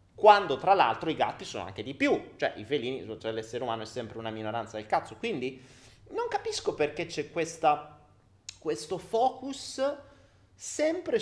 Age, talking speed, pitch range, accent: 30-49, 160 wpm, 110-150 Hz, native